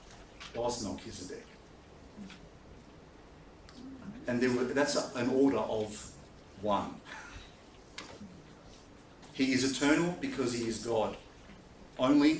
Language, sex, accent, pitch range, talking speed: English, male, Australian, 125-155 Hz, 85 wpm